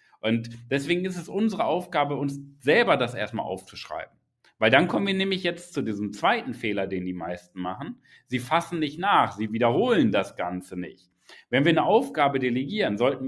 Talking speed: 180 wpm